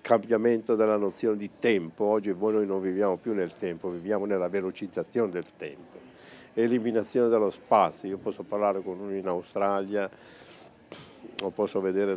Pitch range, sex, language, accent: 95-110 Hz, male, Italian, native